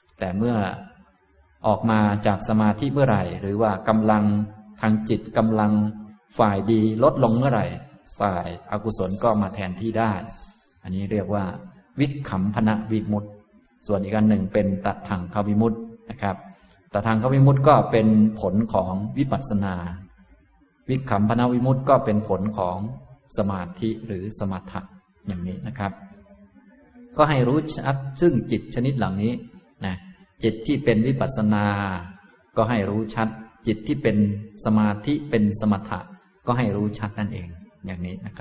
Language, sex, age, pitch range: Thai, male, 20-39, 100-115 Hz